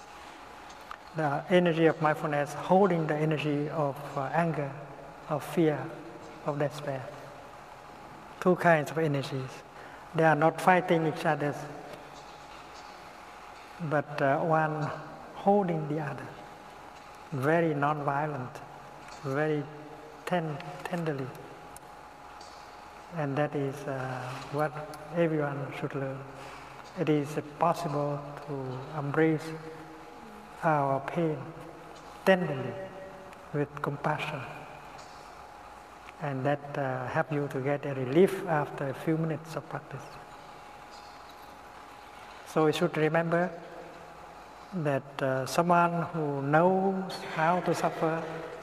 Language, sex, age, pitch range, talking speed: English, male, 60-79, 140-165 Hz, 100 wpm